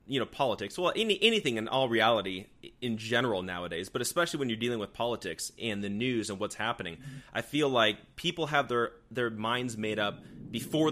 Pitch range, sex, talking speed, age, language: 110-135 Hz, male, 200 wpm, 30-49, English